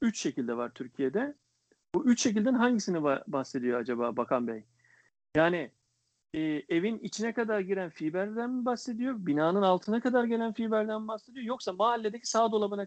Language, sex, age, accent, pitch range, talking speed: Turkish, male, 50-69, native, 145-225 Hz, 150 wpm